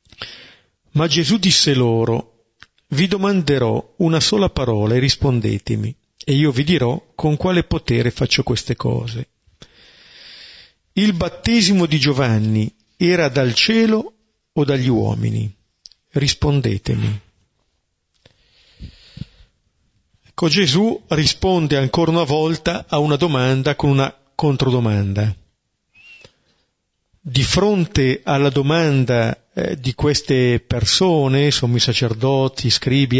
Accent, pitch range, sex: native, 115-150 Hz, male